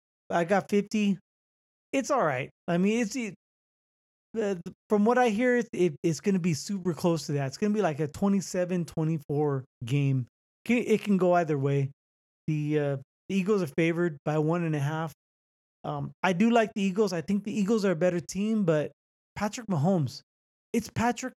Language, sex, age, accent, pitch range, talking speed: English, male, 20-39, American, 150-200 Hz, 195 wpm